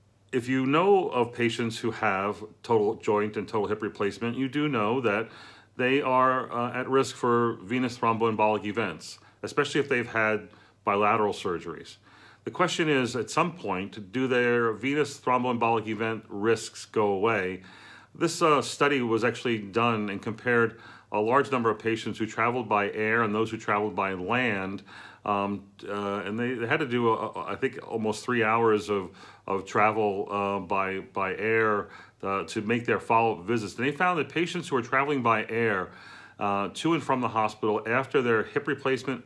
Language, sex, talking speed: English, male, 175 wpm